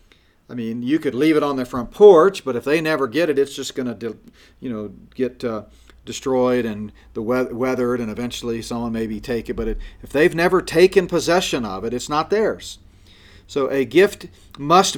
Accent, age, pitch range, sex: American, 40-59, 115-150 Hz, male